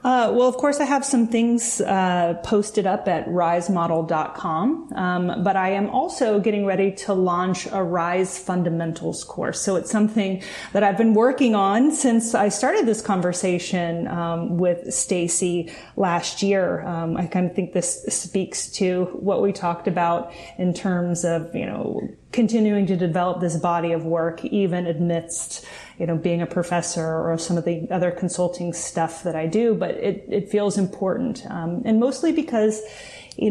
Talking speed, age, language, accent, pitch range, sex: 170 wpm, 30-49, English, American, 175-210 Hz, female